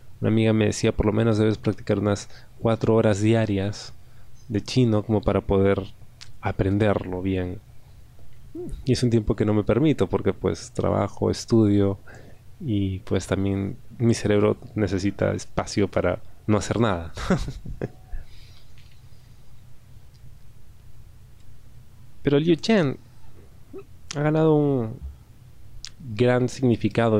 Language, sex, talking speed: Spanish, male, 115 wpm